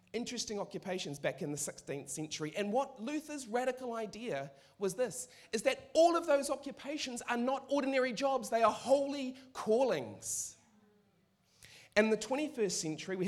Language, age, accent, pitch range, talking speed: English, 30-49, Australian, 185-255 Hz, 150 wpm